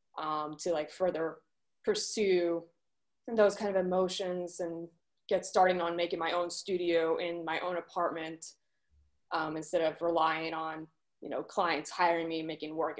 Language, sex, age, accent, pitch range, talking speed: English, female, 20-39, American, 165-215 Hz, 150 wpm